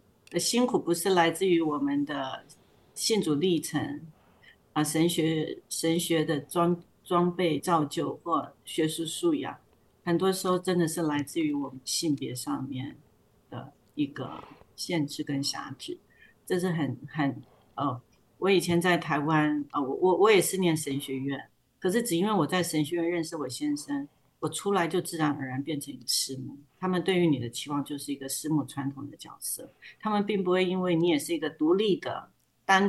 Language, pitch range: Chinese, 145-180 Hz